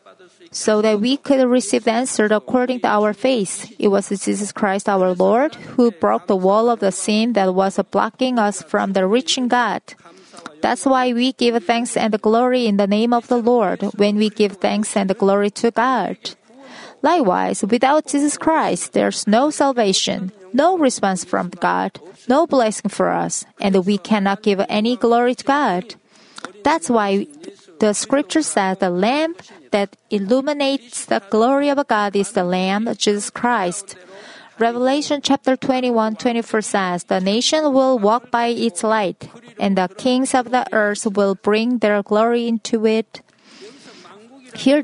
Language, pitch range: Korean, 205-255 Hz